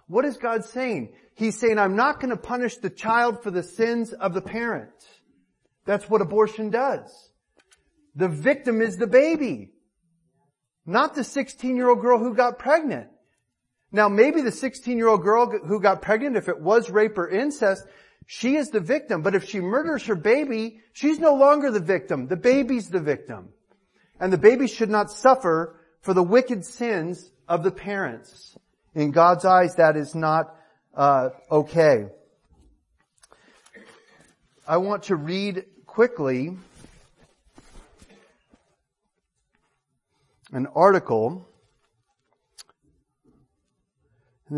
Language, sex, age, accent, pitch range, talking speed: English, male, 40-59, American, 160-235 Hz, 130 wpm